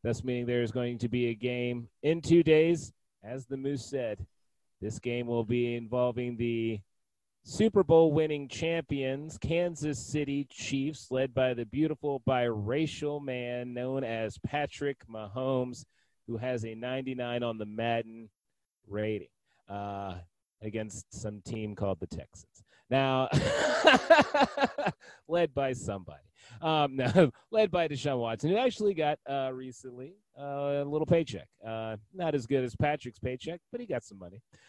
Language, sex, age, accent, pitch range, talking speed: English, male, 30-49, American, 115-150 Hz, 145 wpm